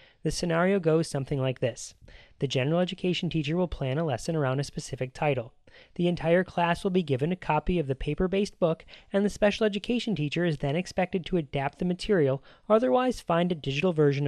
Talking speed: 200 wpm